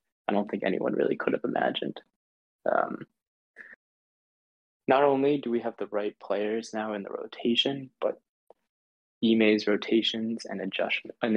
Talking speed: 135 wpm